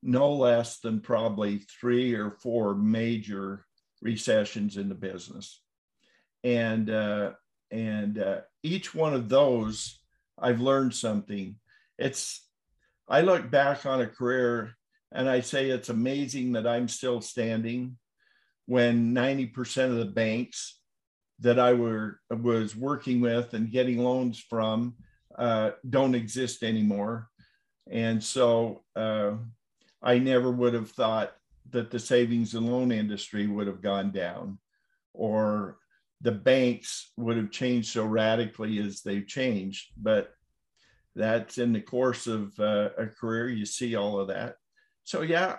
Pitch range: 110-125 Hz